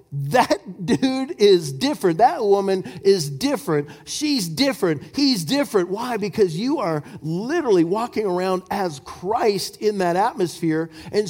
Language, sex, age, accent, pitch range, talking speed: English, male, 50-69, American, 145-210 Hz, 135 wpm